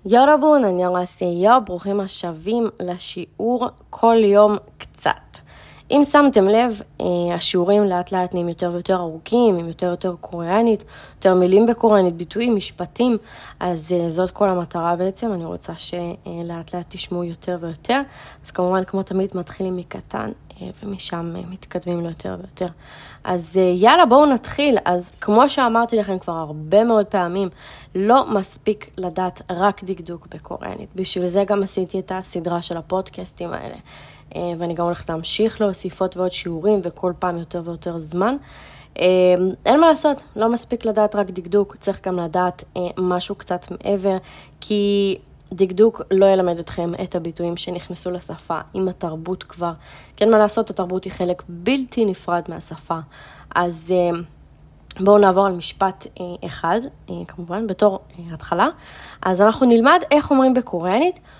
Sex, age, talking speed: female, 20-39, 140 wpm